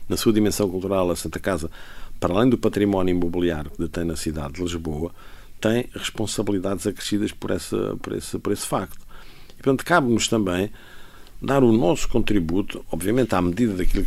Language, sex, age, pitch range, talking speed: Portuguese, male, 50-69, 85-115 Hz, 170 wpm